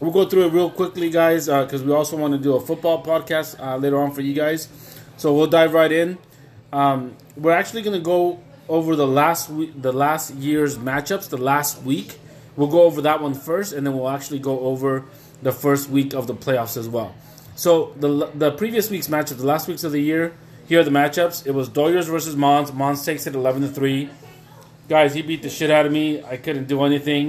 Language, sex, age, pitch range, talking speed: English, male, 20-39, 140-160 Hz, 225 wpm